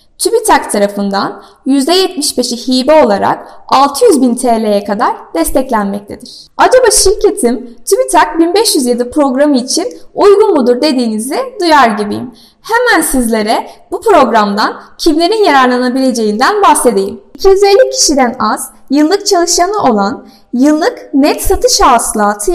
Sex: female